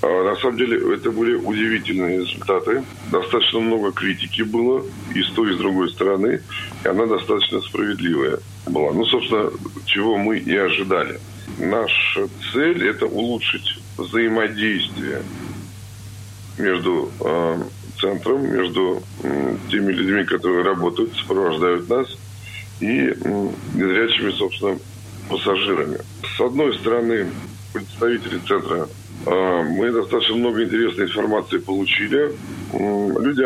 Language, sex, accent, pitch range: Russian, male, native, 95-110 Hz